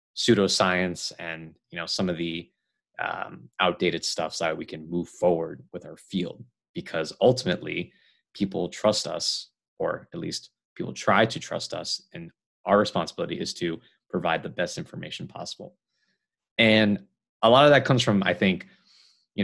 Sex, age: male, 20-39